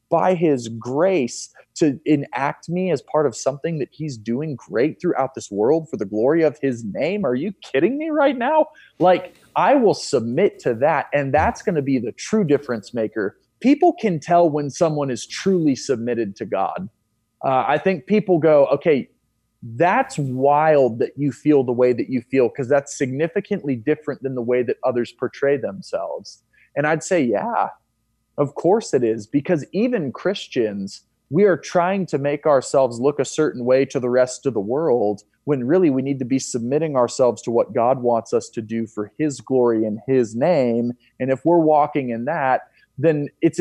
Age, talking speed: 30-49, 190 wpm